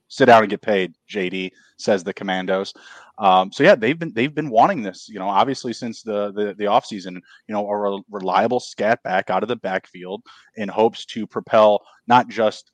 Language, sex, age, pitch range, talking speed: English, male, 20-39, 95-110 Hz, 205 wpm